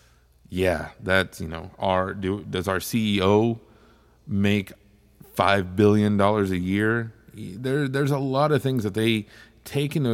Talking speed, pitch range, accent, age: 140 wpm, 90-120 Hz, American, 30-49